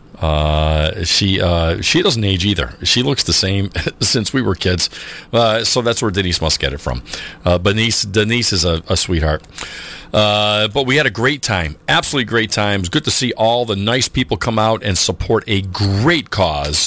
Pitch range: 90-125 Hz